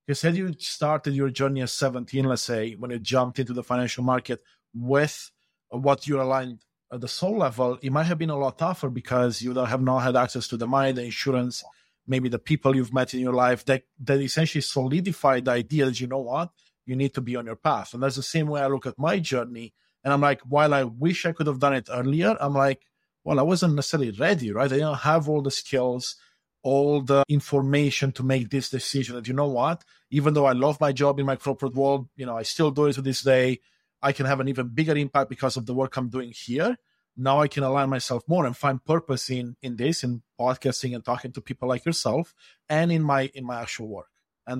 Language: English